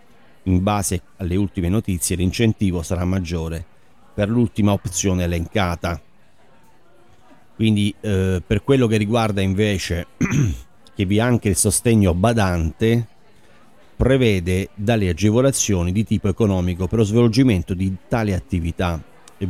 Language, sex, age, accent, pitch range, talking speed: Italian, male, 40-59, native, 85-105 Hz, 120 wpm